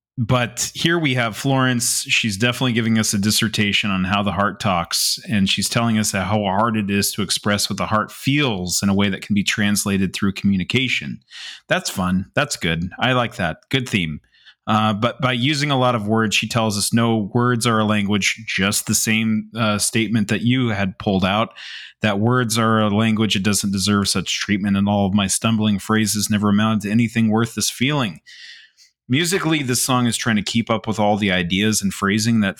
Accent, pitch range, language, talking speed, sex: American, 100-120 Hz, English, 205 wpm, male